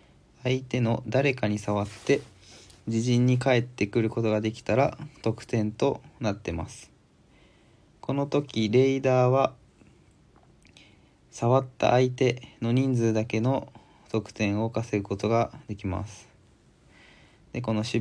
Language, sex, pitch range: Japanese, male, 110-130 Hz